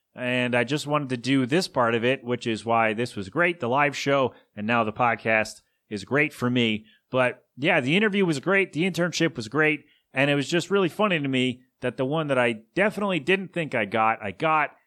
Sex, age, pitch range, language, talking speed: male, 30-49, 120-160 Hz, English, 230 wpm